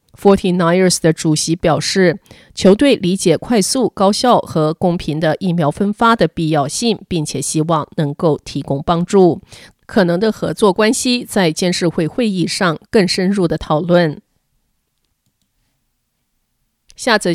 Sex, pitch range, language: female, 165-210 Hz, Chinese